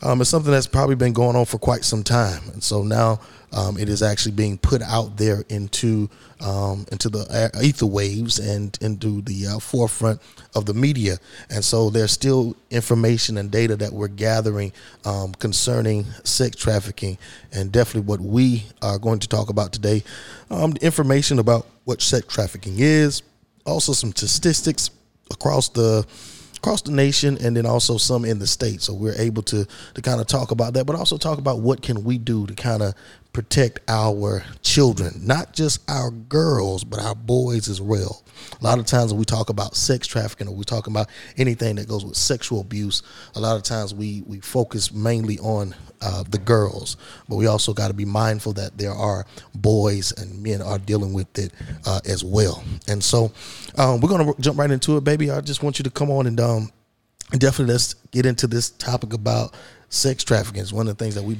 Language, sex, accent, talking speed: English, male, American, 200 wpm